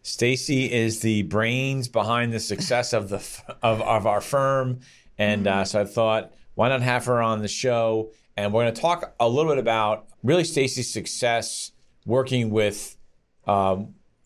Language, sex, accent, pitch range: English, male, American, 105-125 Hz